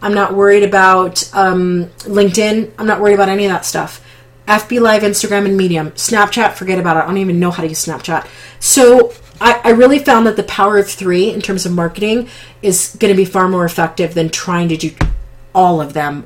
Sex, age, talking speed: female, 30-49, 220 wpm